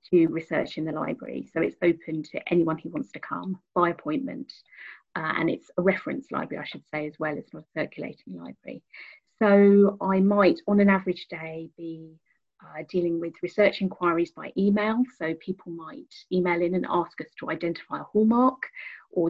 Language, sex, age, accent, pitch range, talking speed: English, female, 30-49, British, 170-195 Hz, 185 wpm